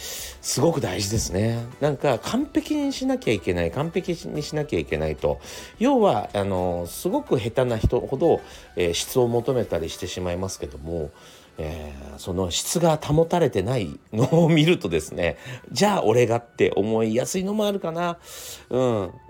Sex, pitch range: male, 95-155 Hz